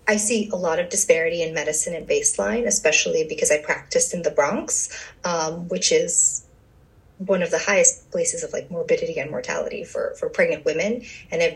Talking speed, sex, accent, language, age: 185 wpm, female, American, English, 30-49